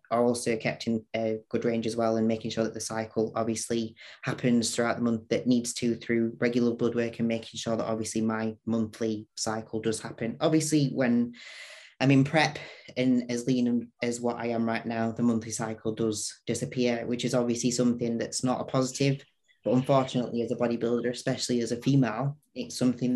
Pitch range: 115-125 Hz